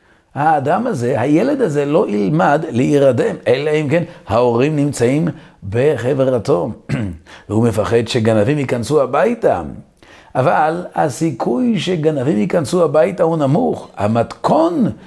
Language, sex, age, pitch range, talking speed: Hebrew, male, 50-69, 120-160 Hz, 105 wpm